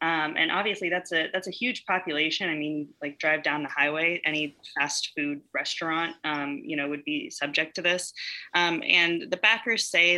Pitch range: 155-185 Hz